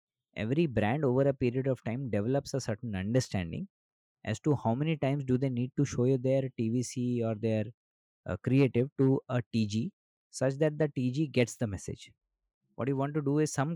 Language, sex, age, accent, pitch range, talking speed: English, male, 20-39, Indian, 120-155 Hz, 195 wpm